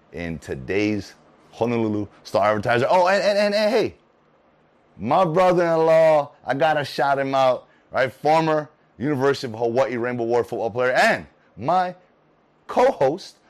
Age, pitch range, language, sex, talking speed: 30-49, 110-155 Hz, English, male, 140 wpm